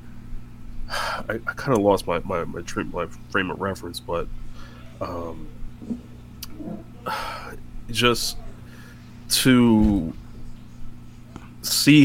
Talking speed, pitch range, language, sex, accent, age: 85 wpm, 95-115 Hz, English, male, American, 20-39